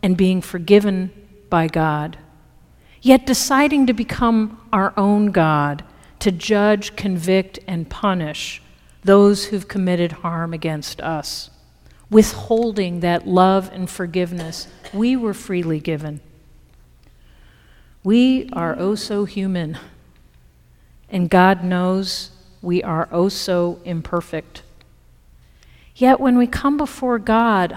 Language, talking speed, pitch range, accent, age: English, 110 wpm, 165-220 Hz, American, 50-69